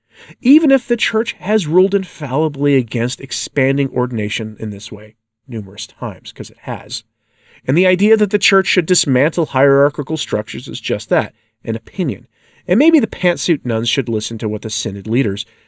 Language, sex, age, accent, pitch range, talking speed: English, male, 40-59, American, 110-145 Hz, 170 wpm